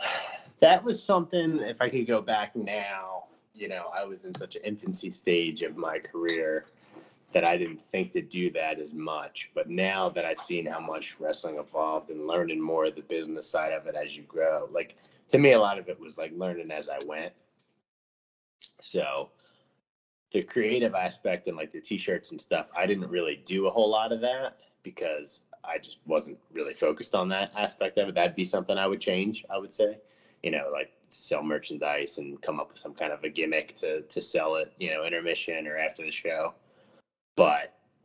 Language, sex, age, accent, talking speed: English, male, 30-49, American, 205 wpm